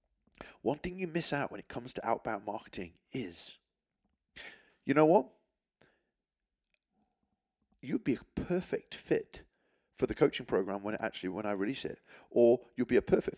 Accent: British